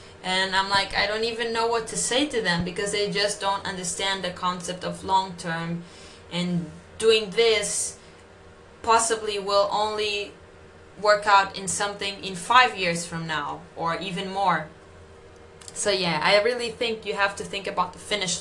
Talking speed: 165 wpm